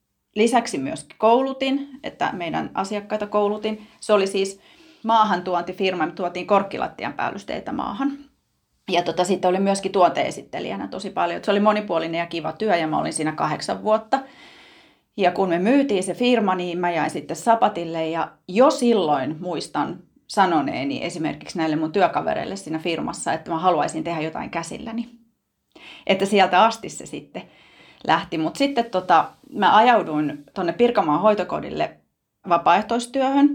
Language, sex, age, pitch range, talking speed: Finnish, female, 30-49, 170-235 Hz, 140 wpm